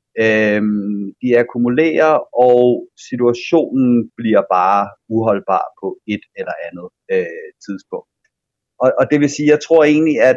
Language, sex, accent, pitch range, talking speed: Danish, male, native, 115-150 Hz, 135 wpm